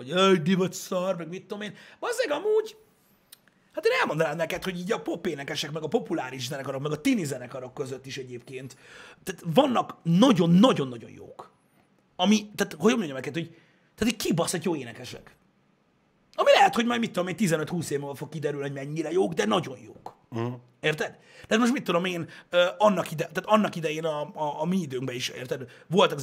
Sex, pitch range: male, 145-195 Hz